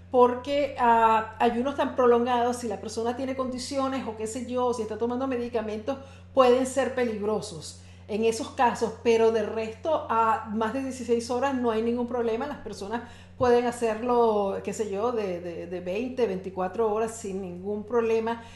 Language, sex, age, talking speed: Spanish, female, 50-69, 165 wpm